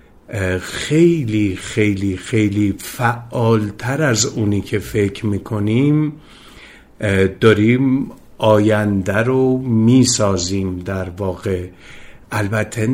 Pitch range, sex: 100-115 Hz, male